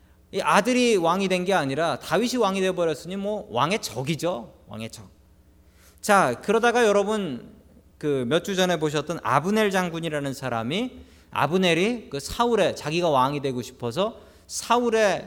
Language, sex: Korean, male